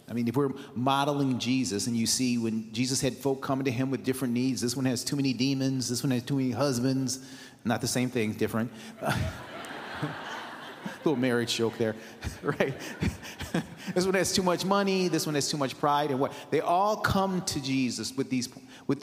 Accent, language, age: American, English, 30-49